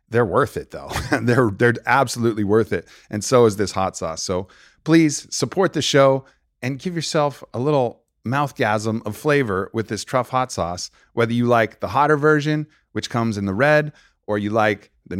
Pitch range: 95-125 Hz